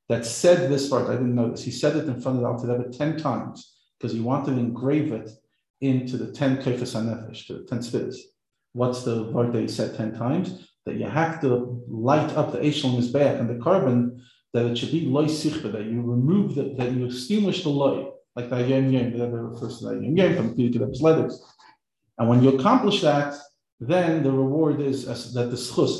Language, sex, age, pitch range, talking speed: English, male, 50-69, 120-145 Hz, 210 wpm